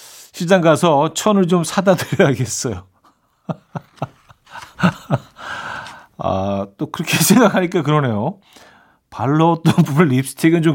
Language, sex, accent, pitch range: Korean, male, native, 115-170 Hz